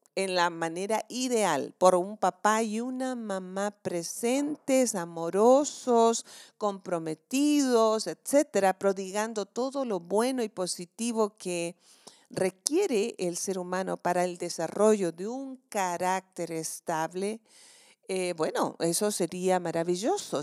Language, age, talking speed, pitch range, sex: Spanish, 40-59, 110 wpm, 175-230 Hz, female